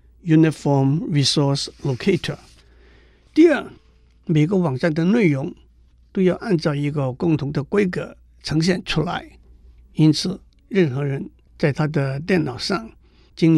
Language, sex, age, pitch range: Chinese, male, 60-79, 145-185 Hz